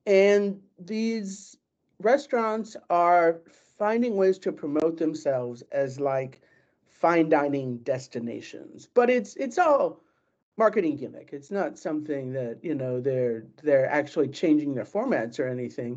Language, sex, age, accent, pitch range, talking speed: English, male, 50-69, American, 145-215 Hz, 130 wpm